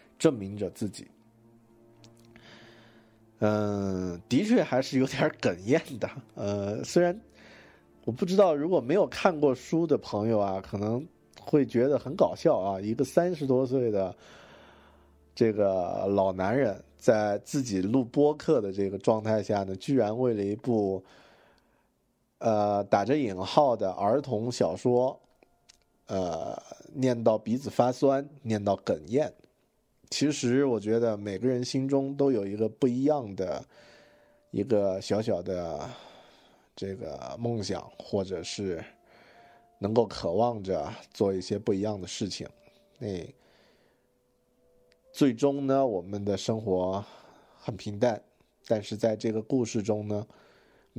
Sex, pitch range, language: male, 100-125 Hz, Chinese